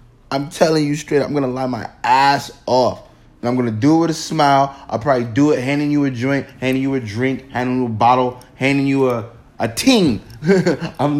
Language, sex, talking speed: English, male, 225 wpm